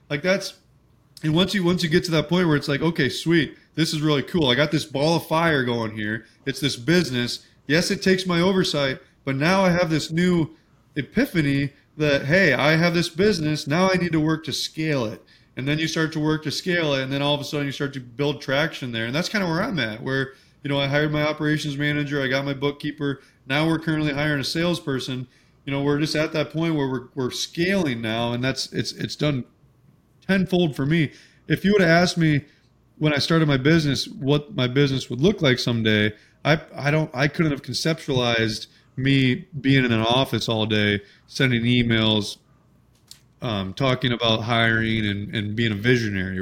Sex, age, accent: male, 30-49, American